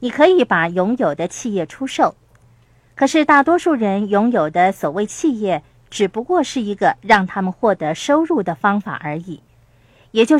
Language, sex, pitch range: Chinese, female, 170-270 Hz